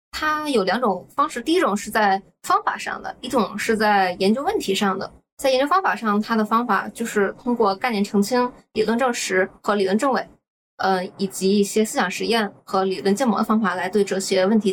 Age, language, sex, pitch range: 20-39, Chinese, female, 195-245 Hz